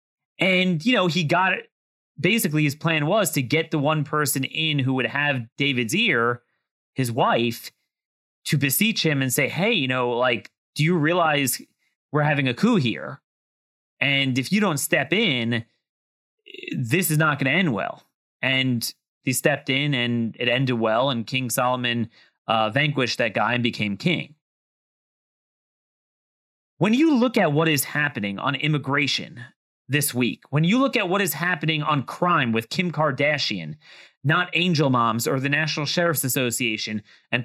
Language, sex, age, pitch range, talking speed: English, male, 30-49, 130-175 Hz, 165 wpm